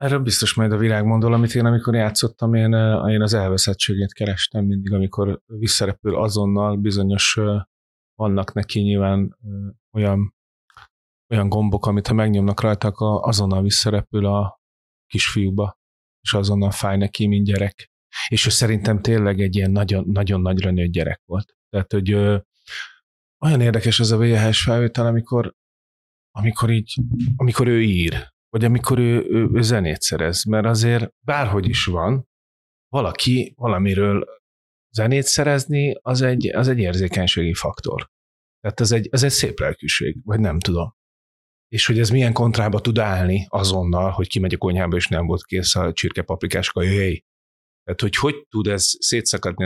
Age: 30-49